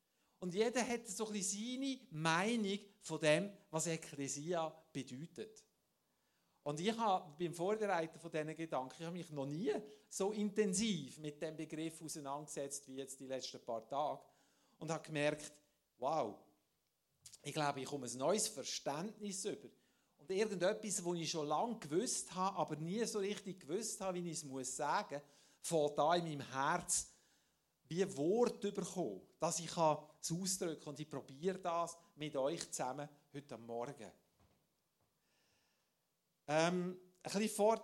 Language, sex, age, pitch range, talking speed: German, male, 50-69, 145-190 Hz, 145 wpm